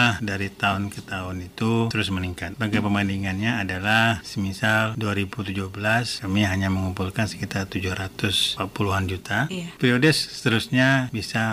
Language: Indonesian